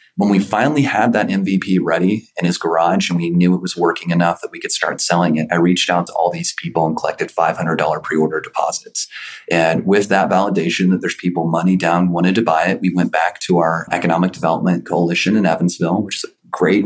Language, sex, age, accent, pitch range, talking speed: English, male, 30-49, American, 85-95 Hz, 215 wpm